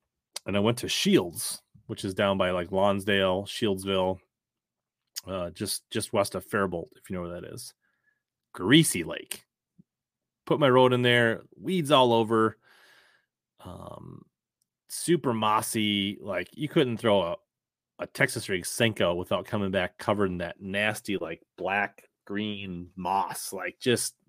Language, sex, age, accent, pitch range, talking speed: English, male, 30-49, American, 100-145 Hz, 145 wpm